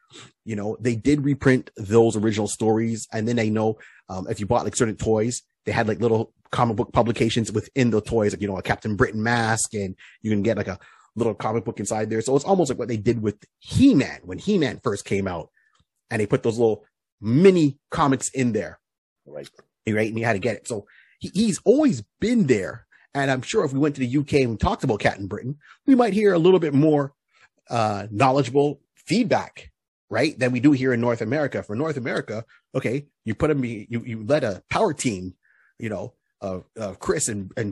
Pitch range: 110-140 Hz